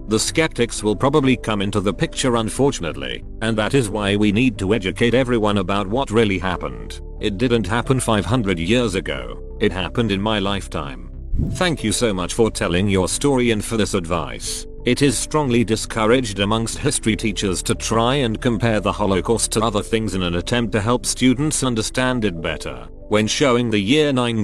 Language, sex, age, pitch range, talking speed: English, male, 40-59, 100-125 Hz, 185 wpm